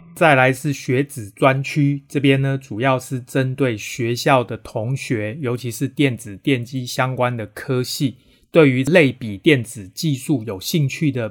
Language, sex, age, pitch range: Chinese, male, 30-49, 115-140 Hz